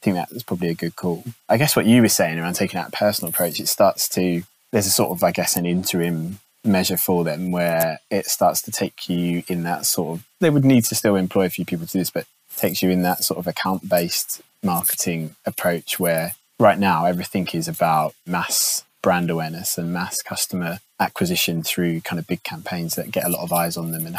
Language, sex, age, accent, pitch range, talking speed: English, male, 20-39, British, 85-95 Hz, 225 wpm